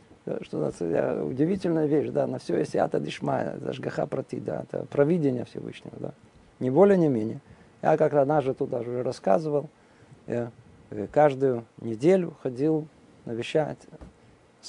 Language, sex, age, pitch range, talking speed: Russian, male, 40-59, 120-150 Hz, 130 wpm